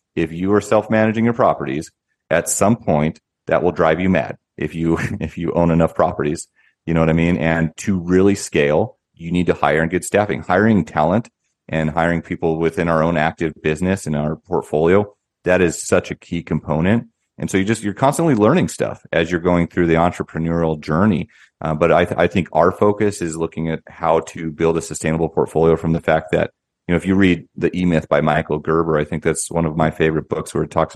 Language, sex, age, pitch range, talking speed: English, male, 30-49, 80-90 Hz, 225 wpm